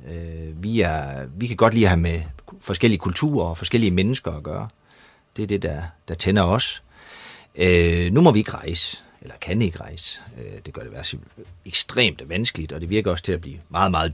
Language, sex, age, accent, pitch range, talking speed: Danish, male, 30-49, native, 85-125 Hz, 210 wpm